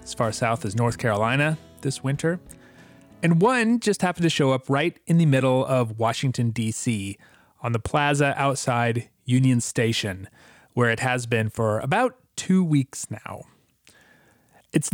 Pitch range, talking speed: 115-145 Hz, 155 wpm